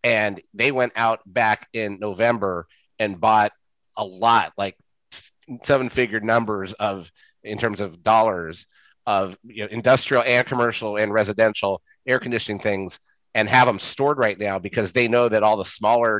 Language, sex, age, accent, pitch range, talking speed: English, male, 30-49, American, 100-125 Hz, 160 wpm